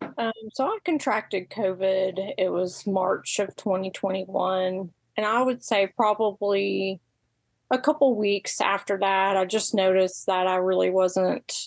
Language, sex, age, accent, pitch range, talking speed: English, female, 30-49, American, 180-200 Hz, 140 wpm